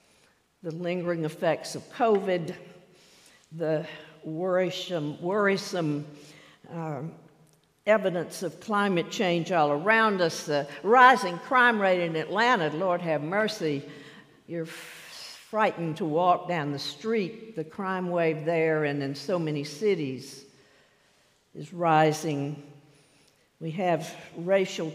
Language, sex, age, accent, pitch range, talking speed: English, female, 60-79, American, 155-200 Hz, 110 wpm